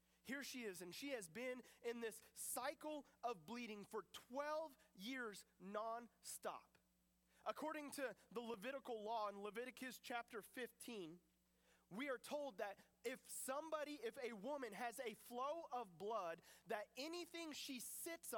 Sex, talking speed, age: male, 140 wpm, 30-49